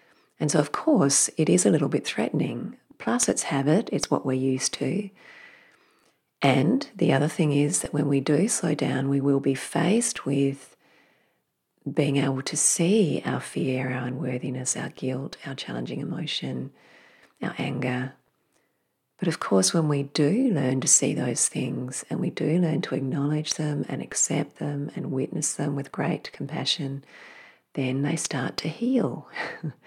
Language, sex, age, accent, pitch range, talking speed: English, female, 40-59, Australian, 135-165 Hz, 165 wpm